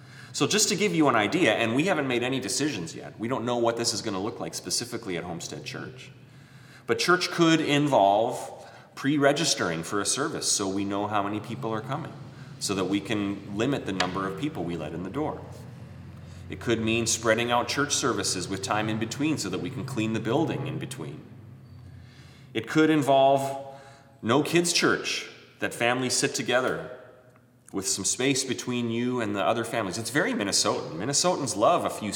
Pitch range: 105-135 Hz